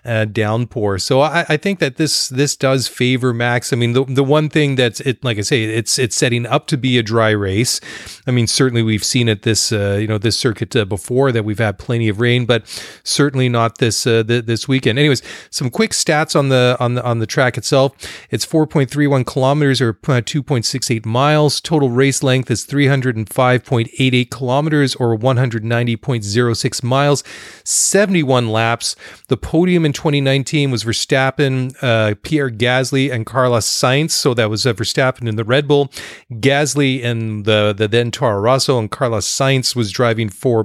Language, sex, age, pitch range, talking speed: English, male, 30-49, 115-140 Hz, 210 wpm